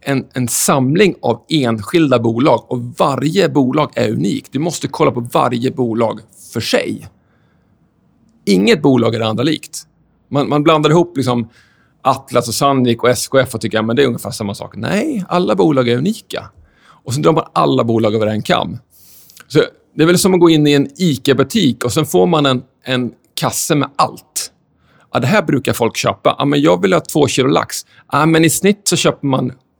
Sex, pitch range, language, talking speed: male, 120-160 Hz, Swedish, 195 wpm